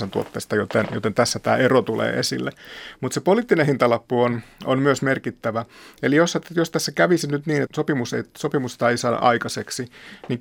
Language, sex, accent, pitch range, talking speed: Finnish, male, native, 115-135 Hz, 180 wpm